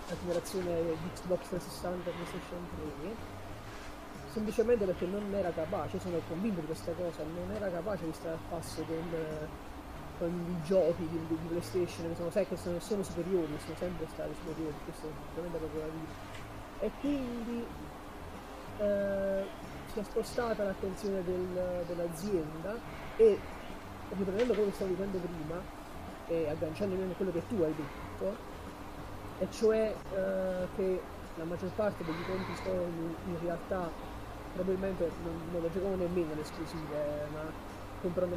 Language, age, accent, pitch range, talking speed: Italian, 30-49, native, 165-195 Hz, 145 wpm